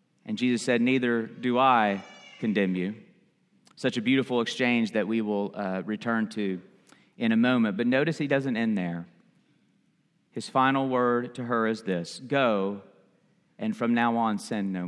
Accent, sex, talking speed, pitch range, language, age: American, male, 165 wpm, 105-130 Hz, English, 40-59